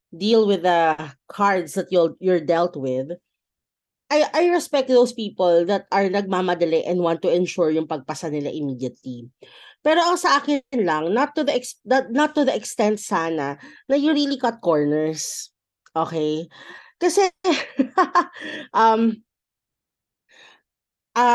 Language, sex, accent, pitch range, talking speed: Filipino, female, native, 170-265 Hz, 130 wpm